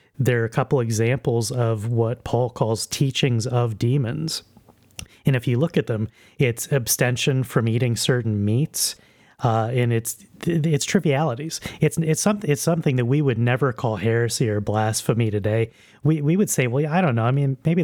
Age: 30-49